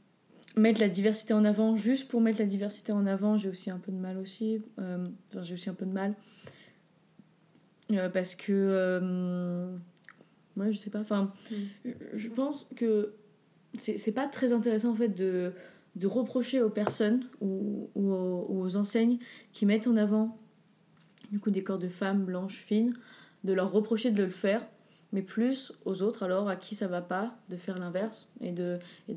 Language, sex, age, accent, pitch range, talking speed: French, female, 20-39, French, 185-215 Hz, 180 wpm